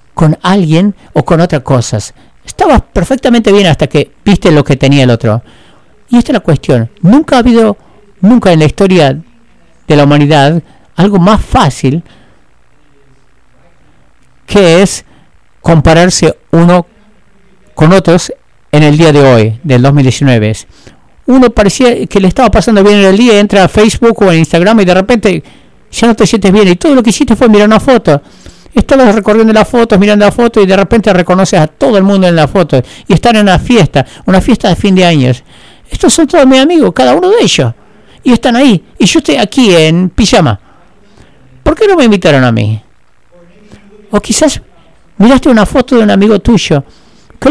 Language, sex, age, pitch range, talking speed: English, male, 50-69, 155-225 Hz, 185 wpm